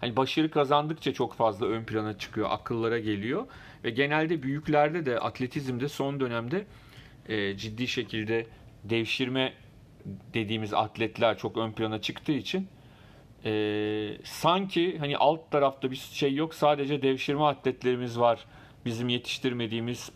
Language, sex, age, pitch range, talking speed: Turkish, male, 40-59, 115-145 Hz, 125 wpm